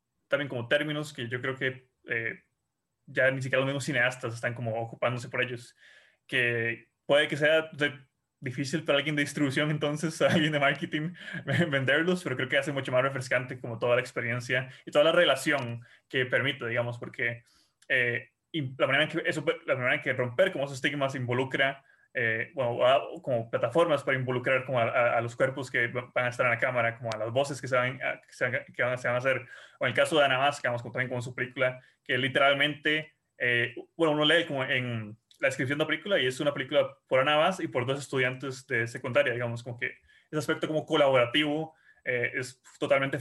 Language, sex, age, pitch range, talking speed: English, male, 20-39, 125-150 Hz, 210 wpm